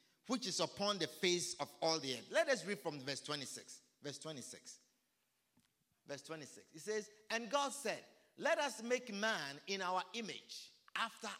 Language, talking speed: English, 170 wpm